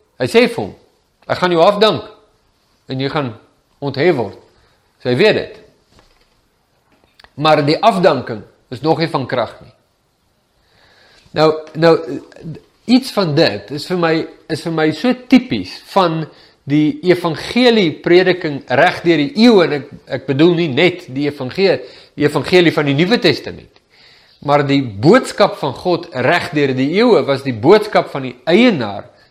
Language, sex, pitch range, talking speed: English, male, 135-180 Hz, 150 wpm